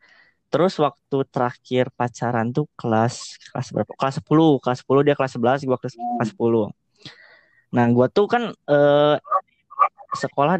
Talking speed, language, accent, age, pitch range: 130 wpm, Indonesian, native, 20-39, 120-150 Hz